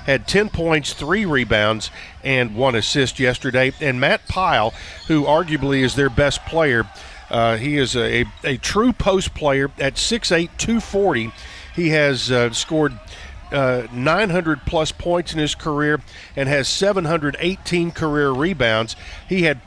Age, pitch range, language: 50-69, 120-160 Hz, English